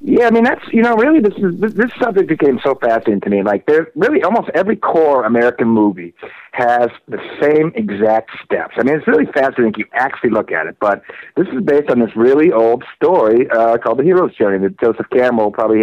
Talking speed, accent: 220 wpm, American